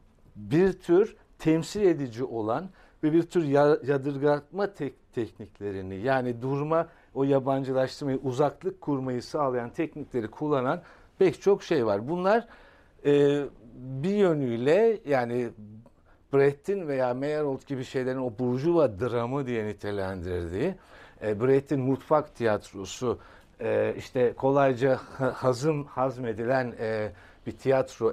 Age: 60-79